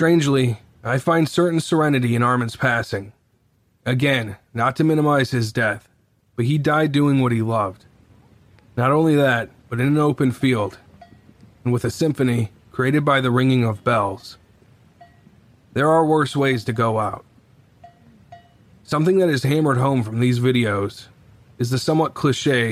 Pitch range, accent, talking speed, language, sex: 115-145 Hz, American, 155 wpm, English, male